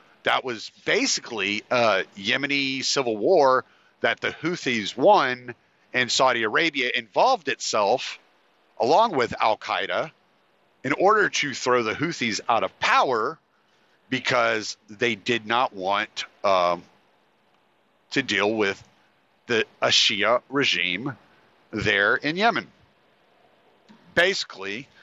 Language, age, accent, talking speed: English, 50-69, American, 110 wpm